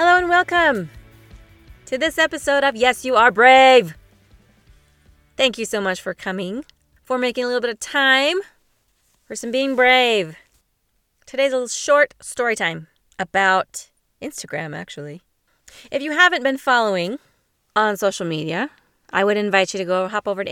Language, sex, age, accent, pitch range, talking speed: English, female, 20-39, American, 185-265 Hz, 160 wpm